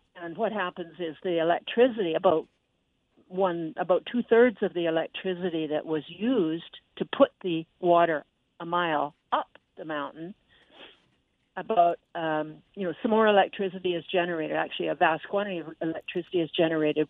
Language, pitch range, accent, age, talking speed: English, 160-200 Hz, American, 60-79, 145 wpm